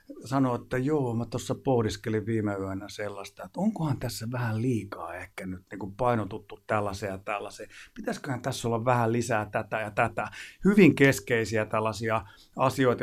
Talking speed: 150 wpm